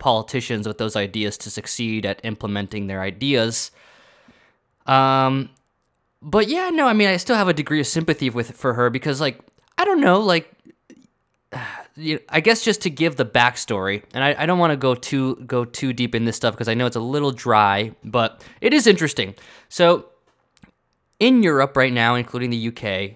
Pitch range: 105-135 Hz